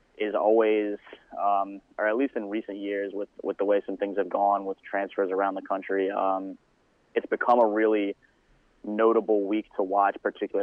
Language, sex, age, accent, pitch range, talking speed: English, male, 20-39, American, 100-105 Hz, 180 wpm